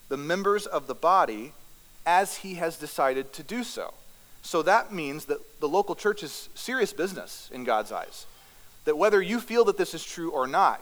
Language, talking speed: English, 195 wpm